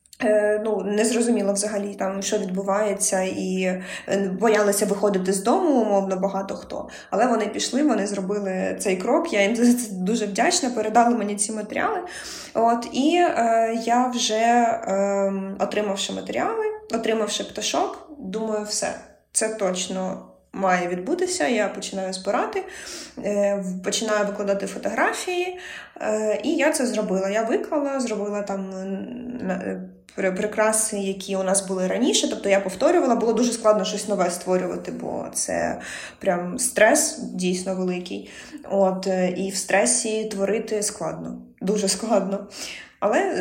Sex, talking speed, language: female, 130 wpm, Ukrainian